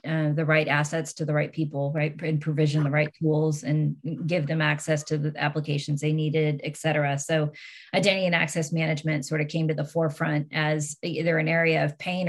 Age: 30-49